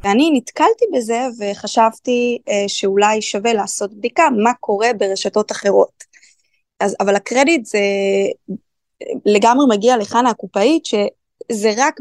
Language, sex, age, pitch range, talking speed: Hebrew, female, 20-39, 200-245 Hz, 110 wpm